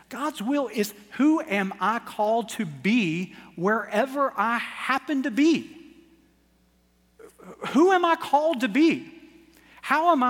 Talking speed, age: 130 wpm, 40-59